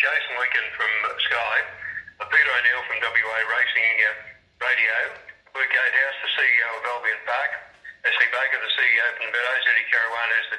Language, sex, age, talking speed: English, male, 40-59, 160 wpm